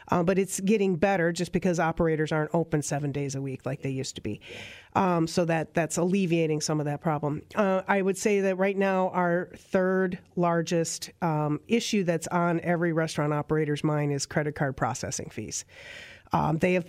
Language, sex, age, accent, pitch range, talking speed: English, female, 40-59, American, 160-180 Hz, 190 wpm